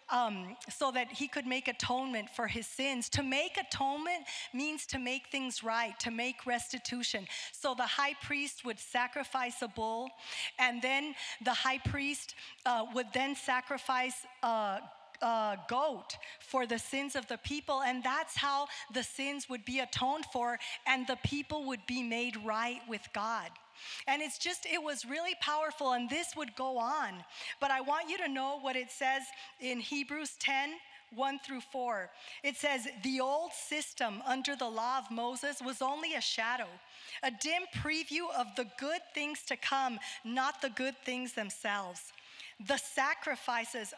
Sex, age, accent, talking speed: female, 40-59, American, 165 wpm